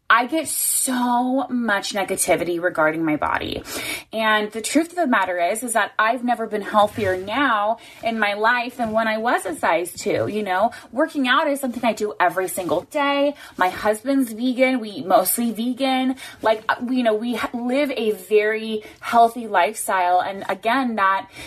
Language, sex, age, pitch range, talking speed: English, female, 20-39, 195-245 Hz, 175 wpm